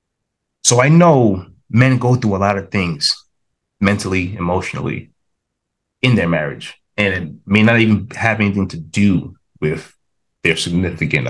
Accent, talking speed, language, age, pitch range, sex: American, 145 wpm, English, 30-49, 95-125 Hz, male